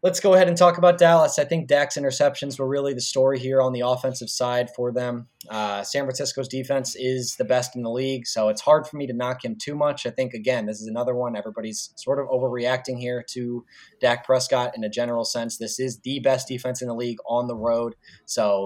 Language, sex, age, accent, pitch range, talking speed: English, male, 20-39, American, 110-130 Hz, 235 wpm